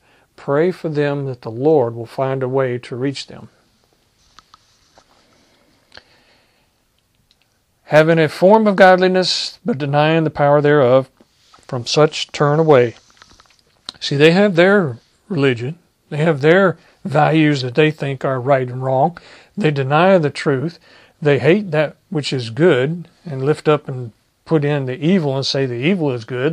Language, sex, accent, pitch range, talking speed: English, male, American, 125-165 Hz, 150 wpm